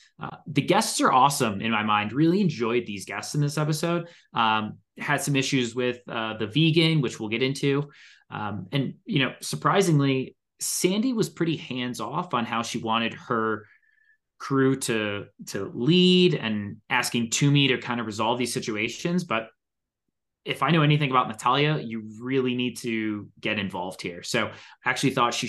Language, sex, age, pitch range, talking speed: English, male, 20-39, 110-145 Hz, 175 wpm